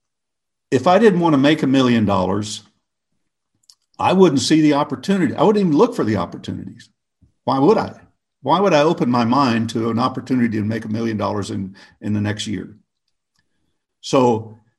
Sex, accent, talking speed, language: male, American, 180 wpm, English